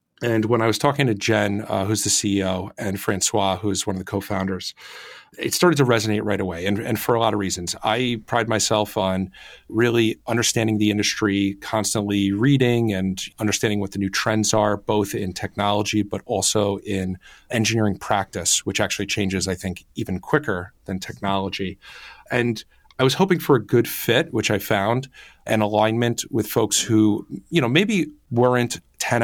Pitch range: 100-115 Hz